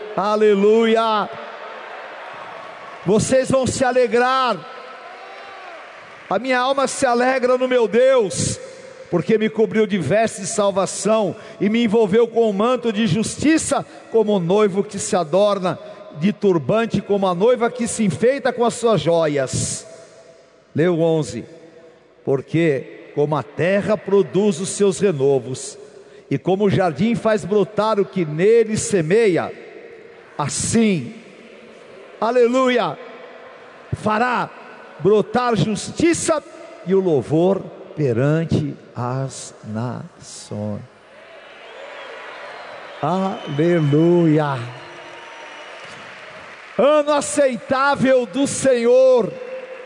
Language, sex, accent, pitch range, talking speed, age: Portuguese, male, Brazilian, 180-255 Hz, 100 wpm, 50-69